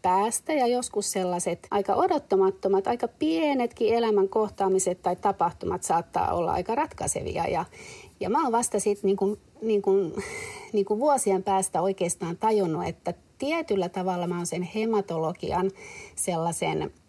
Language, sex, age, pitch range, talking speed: Finnish, female, 30-49, 180-235 Hz, 140 wpm